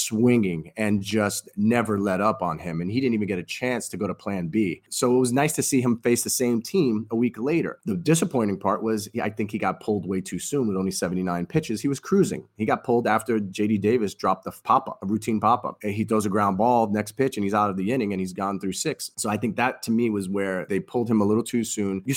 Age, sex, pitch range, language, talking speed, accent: 30-49, male, 95-115 Hz, English, 270 wpm, American